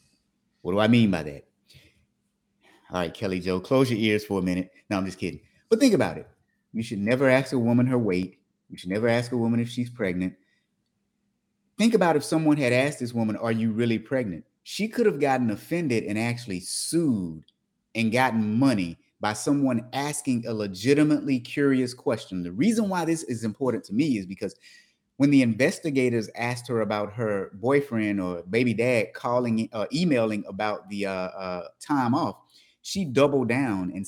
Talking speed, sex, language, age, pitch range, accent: 185 wpm, male, English, 30-49, 105-140 Hz, American